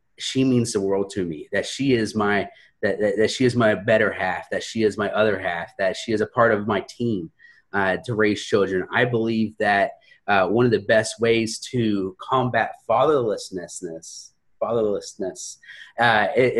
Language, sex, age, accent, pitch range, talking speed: English, male, 30-49, American, 105-125 Hz, 175 wpm